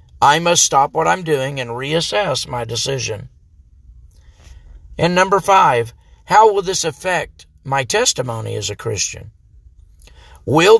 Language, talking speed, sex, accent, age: English, 130 wpm, male, American, 50-69